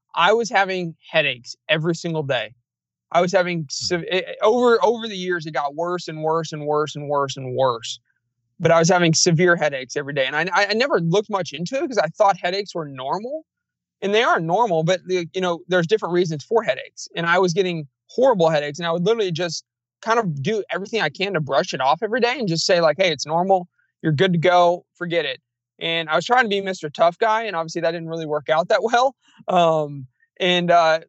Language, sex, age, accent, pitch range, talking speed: English, male, 20-39, American, 145-185 Hz, 230 wpm